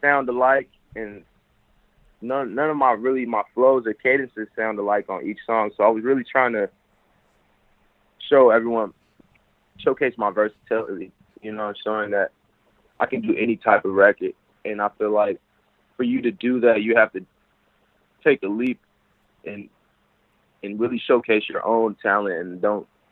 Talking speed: 165 wpm